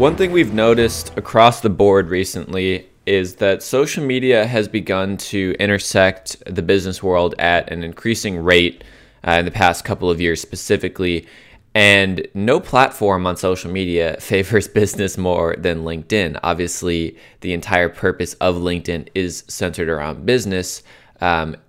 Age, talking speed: 20-39, 150 wpm